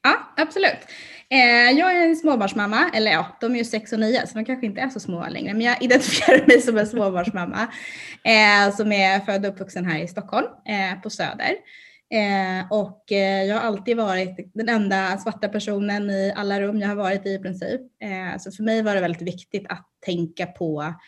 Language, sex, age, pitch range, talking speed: Swedish, female, 20-39, 175-220 Hz, 190 wpm